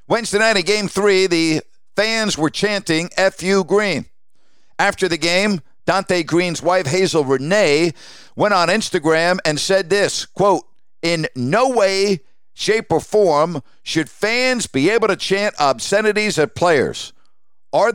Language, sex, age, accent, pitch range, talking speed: English, male, 50-69, American, 160-205 Hz, 140 wpm